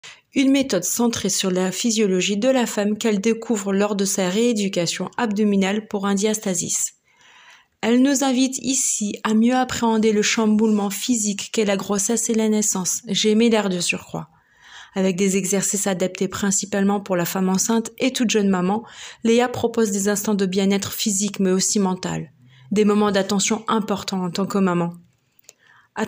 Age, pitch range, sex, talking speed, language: 30-49, 200-235 Hz, female, 165 wpm, French